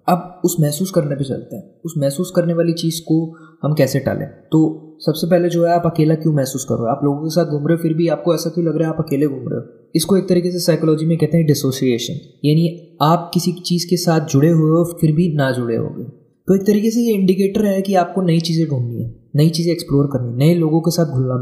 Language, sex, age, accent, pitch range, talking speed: Hindi, male, 20-39, native, 150-180 Hz, 265 wpm